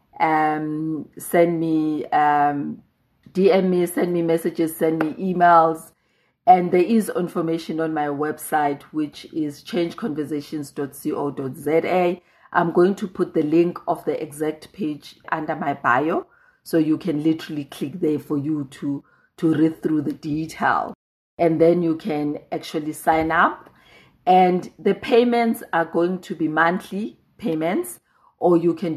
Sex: female